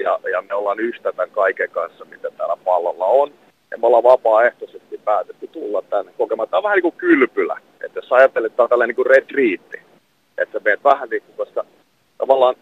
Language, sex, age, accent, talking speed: Finnish, male, 40-59, native, 185 wpm